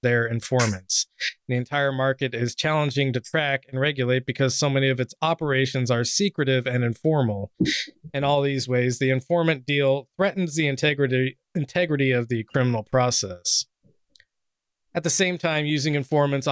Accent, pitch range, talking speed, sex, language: American, 125-140 Hz, 155 wpm, male, English